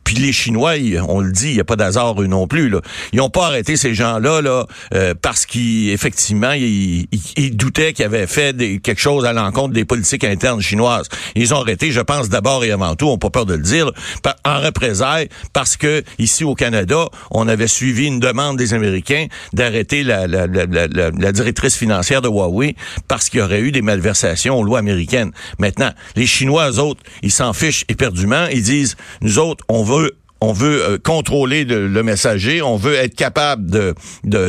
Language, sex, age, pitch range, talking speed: French, male, 60-79, 105-145 Hz, 210 wpm